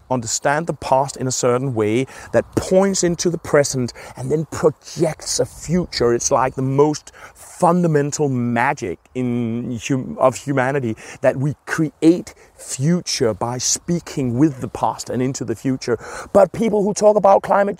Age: 30-49